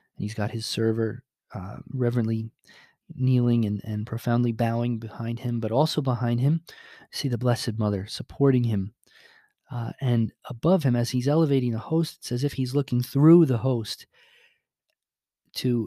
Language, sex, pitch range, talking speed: English, male, 110-130 Hz, 155 wpm